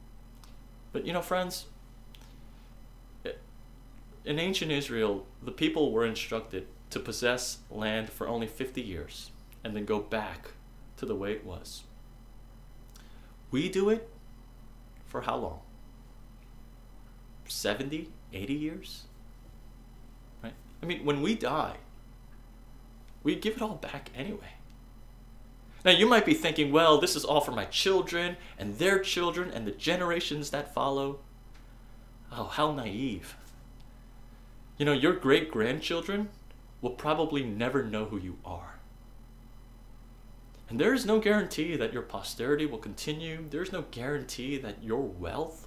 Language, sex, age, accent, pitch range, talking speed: English, male, 30-49, American, 115-150 Hz, 130 wpm